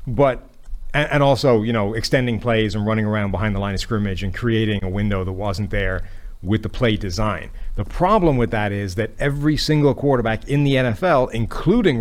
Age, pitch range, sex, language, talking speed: 30-49, 105-130 Hz, male, English, 195 wpm